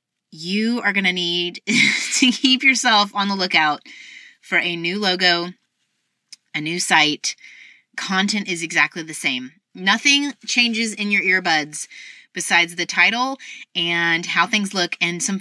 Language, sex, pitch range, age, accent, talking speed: English, female, 165-215 Hz, 30-49, American, 145 wpm